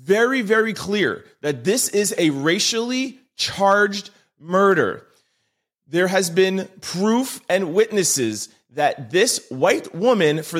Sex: male